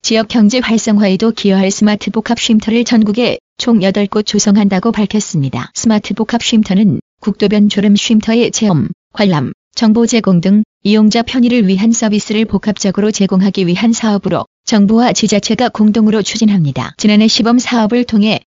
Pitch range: 200-225 Hz